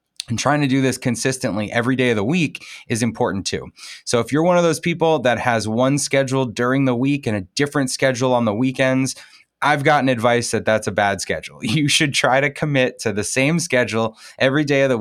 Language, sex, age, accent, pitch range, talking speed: English, male, 20-39, American, 110-135 Hz, 225 wpm